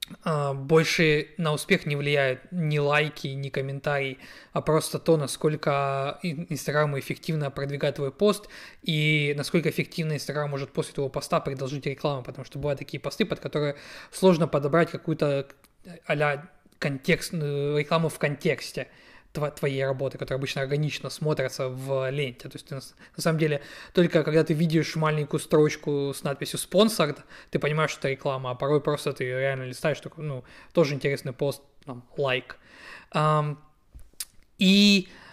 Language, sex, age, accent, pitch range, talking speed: Ukrainian, male, 20-39, native, 140-165 Hz, 140 wpm